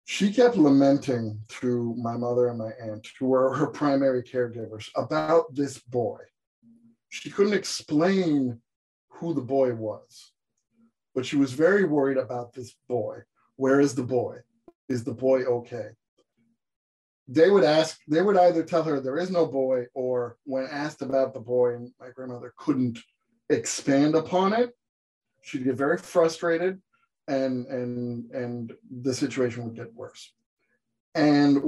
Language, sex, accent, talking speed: English, male, American, 145 wpm